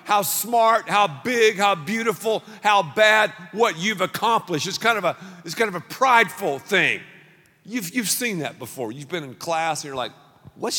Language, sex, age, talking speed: English, male, 50-69, 170 wpm